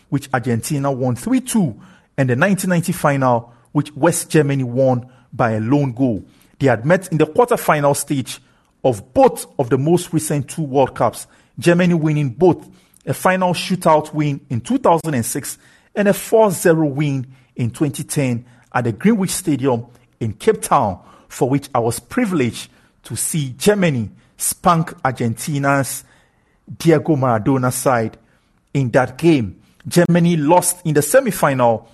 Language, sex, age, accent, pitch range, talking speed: English, male, 50-69, Nigerian, 125-170 Hz, 135 wpm